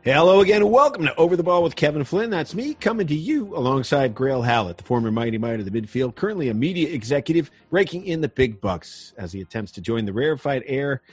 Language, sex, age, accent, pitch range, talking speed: English, male, 40-59, American, 115-160 Hz, 230 wpm